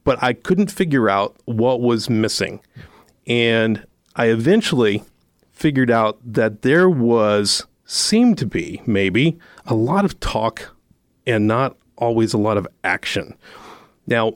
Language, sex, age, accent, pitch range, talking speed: English, male, 40-59, American, 110-145 Hz, 135 wpm